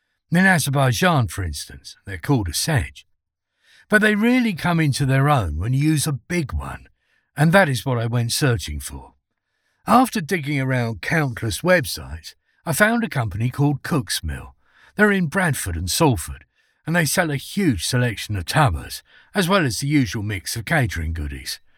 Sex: male